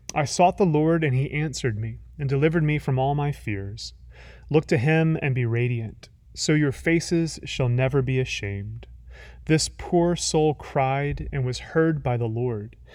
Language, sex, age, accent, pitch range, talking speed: English, male, 30-49, American, 115-145 Hz, 175 wpm